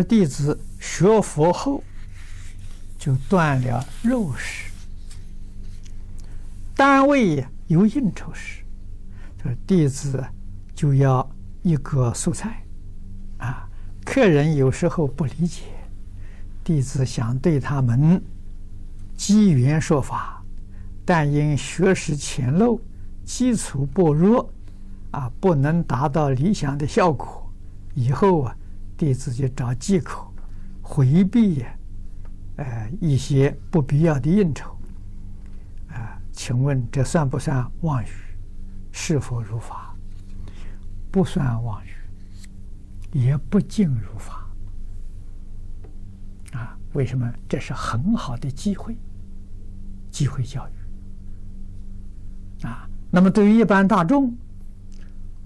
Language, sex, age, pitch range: Chinese, male, 60-79, 95-145 Hz